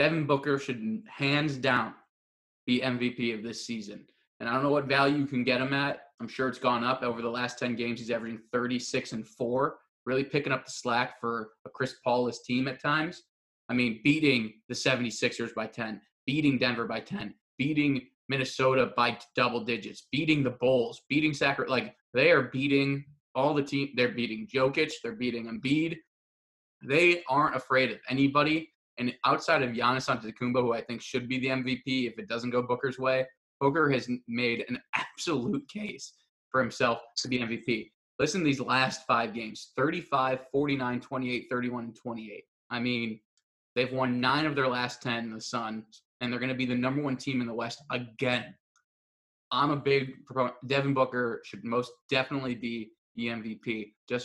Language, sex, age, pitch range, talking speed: English, male, 20-39, 120-140 Hz, 180 wpm